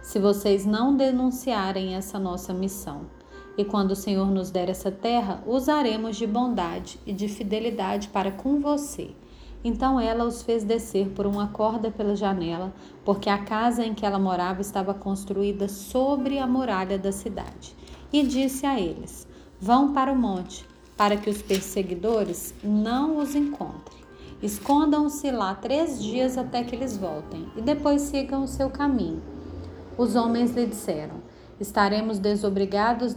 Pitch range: 200-250 Hz